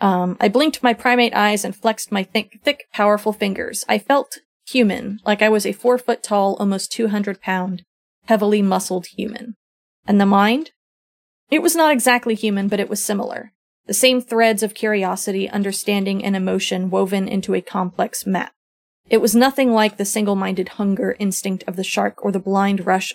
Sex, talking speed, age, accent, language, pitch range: female, 165 wpm, 30-49, American, English, 195-235 Hz